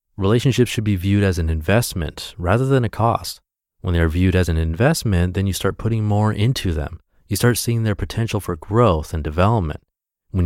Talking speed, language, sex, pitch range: 200 wpm, English, male, 85-110 Hz